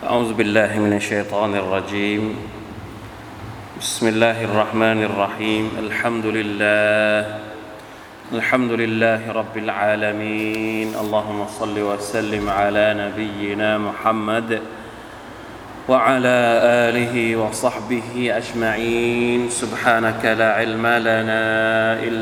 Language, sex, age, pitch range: Thai, male, 20-39, 110-115 Hz